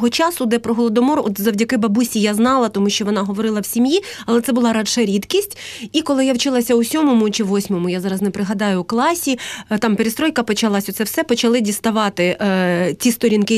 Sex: female